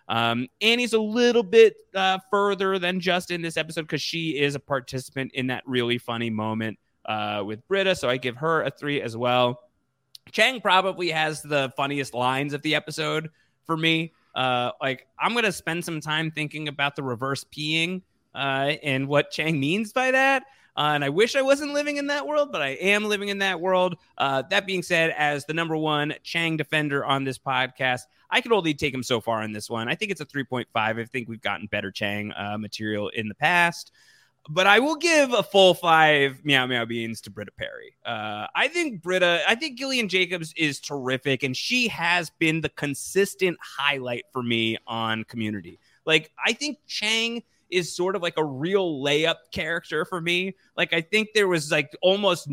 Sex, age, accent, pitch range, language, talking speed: male, 30-49, American, 130-185 Hz, English, 200 wpm